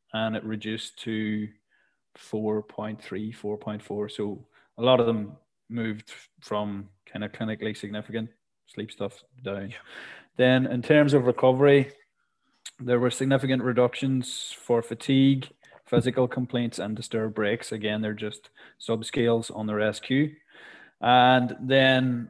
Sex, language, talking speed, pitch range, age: male, English, 120 wpm, 105-125 Hz, 20-39